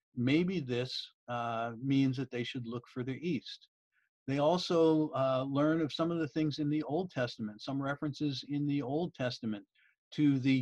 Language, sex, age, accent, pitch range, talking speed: English, male, 50-69, American, 125-150 Hz, 180 wpm